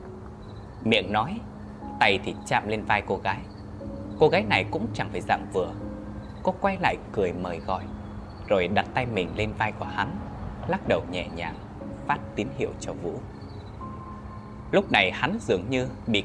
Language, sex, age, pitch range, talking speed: Vietnamese, male, 20-39, 100-105 Hz, 170 wpm